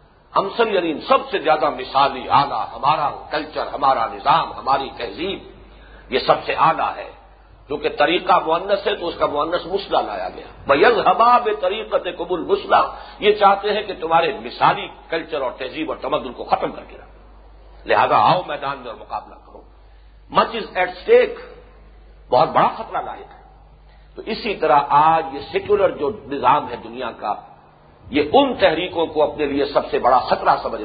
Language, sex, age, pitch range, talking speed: English, male, 50-69, 155-250 Hz, 125 wpm